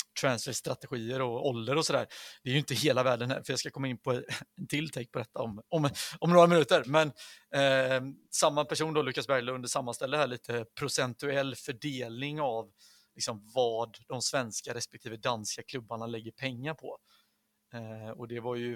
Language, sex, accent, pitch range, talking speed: Swedish, male, native, 115-140 Hz, 180 wpm